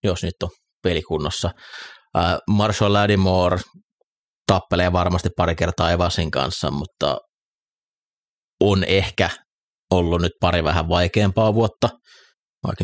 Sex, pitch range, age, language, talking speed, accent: male, 85-95 Hz, 30-49, Finnish, 105 wpm, native